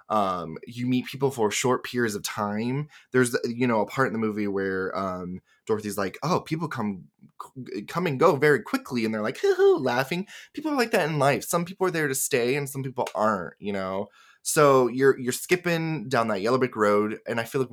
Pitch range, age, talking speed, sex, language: 105-150 Hz, 20-39, 225 wpm, male, English